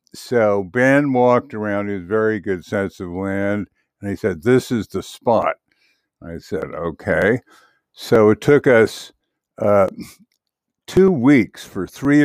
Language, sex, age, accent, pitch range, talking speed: English, male, 60-79, American, 100-125 Hz, 140 wpm